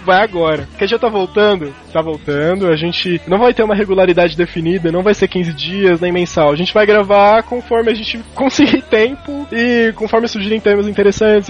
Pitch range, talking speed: 175-220 Hz, 200 wpm